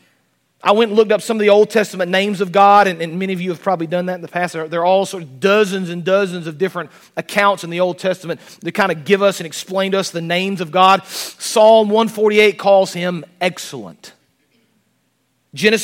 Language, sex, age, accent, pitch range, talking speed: English, male, 40-59, American, 185-220 Hz, 220 wpm